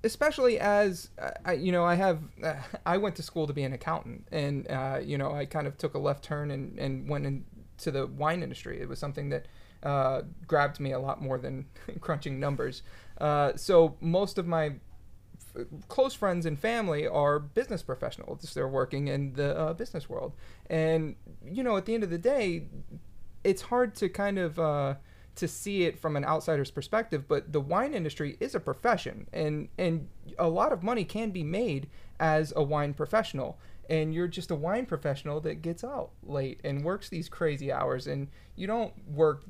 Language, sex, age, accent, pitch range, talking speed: English, male, 30-49, American, 145-190 Hz, 195 wpm